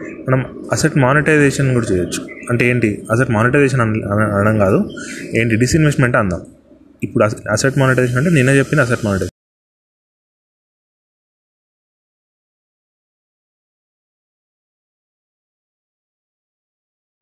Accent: native